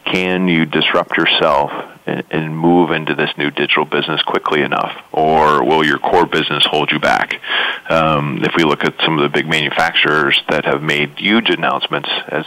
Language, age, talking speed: English, 40-59, 180 wpm